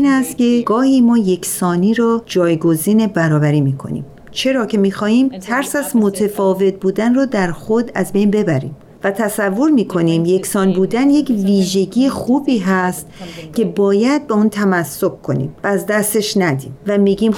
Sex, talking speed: female, 160 wpm